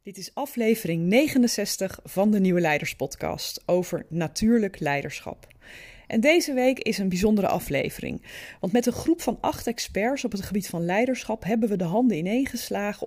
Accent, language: Dutch, Dutch